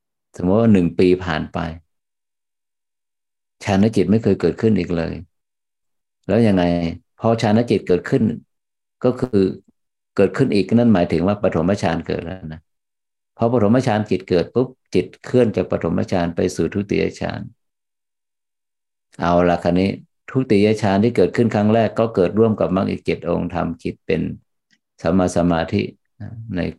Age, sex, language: 50-69, male, Thai